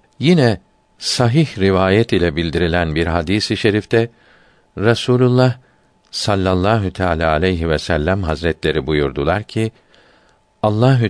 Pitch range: 90-115 Hz